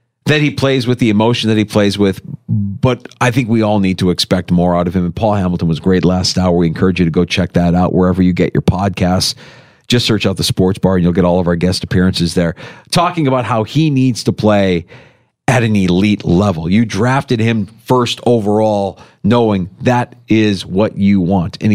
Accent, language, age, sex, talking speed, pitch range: American, English, 40-59, male, 220 wpm, 95-130 Hz